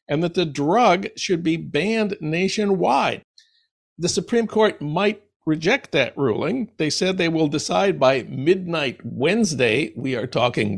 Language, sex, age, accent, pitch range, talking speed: English, male, 60-79, American, 155-200 Hz, 145 wpm